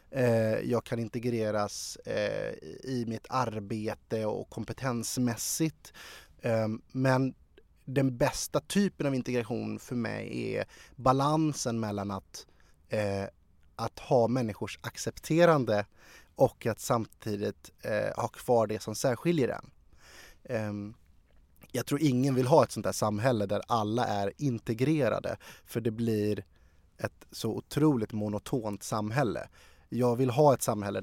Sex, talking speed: male, 115 wpm